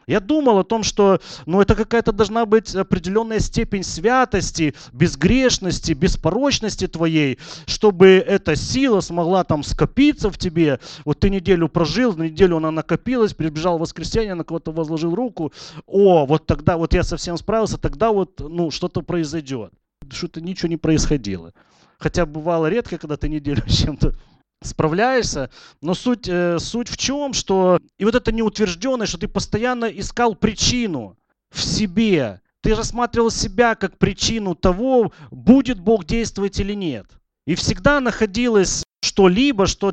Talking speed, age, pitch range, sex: 145 wpm, 30-49, 155-220 Hz, male